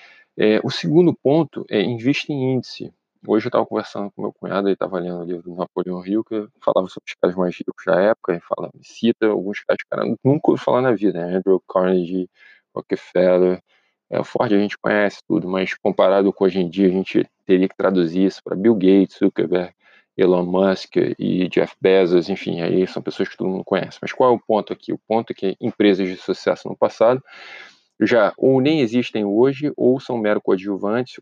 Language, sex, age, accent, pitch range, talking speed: Portuguese, male, 20-39, Brazilian, 95-120 Hz, 210 wpm